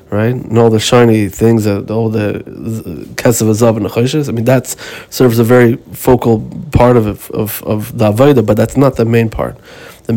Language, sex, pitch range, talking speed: Hebrew, male, 110-125 Hz, 170 wpm